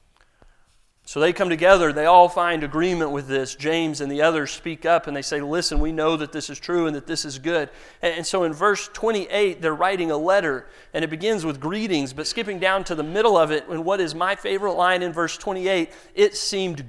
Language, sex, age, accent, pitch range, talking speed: English, male, 40-59, American, 140-185 Hz, 225 wpm